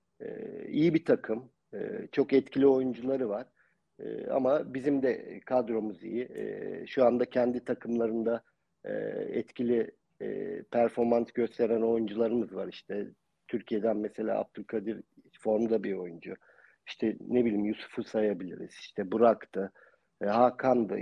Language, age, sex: Turkish, 50-69, male